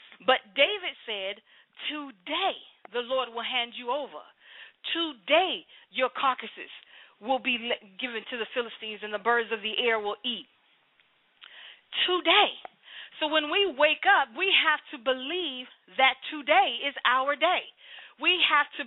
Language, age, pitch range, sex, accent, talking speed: English, 40-59, 245-305 Hz, female, American, 145 wpm